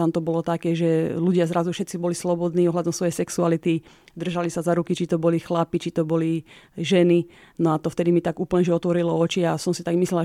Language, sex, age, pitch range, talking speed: Slovak, female, 30-49, 170-185 Hz, 235 wpm